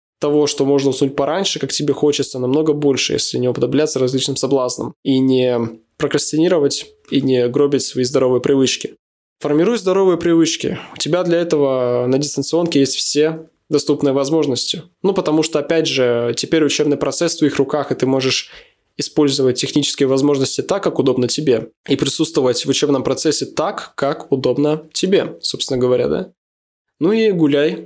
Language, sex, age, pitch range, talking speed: Russian, male, 20-39, 135-165 Hz, 155 wpm